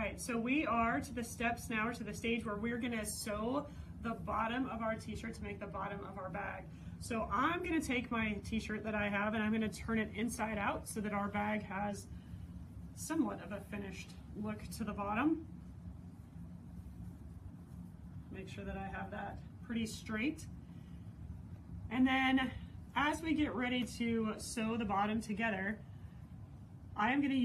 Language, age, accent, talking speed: English, 30-49, American, 180 wpm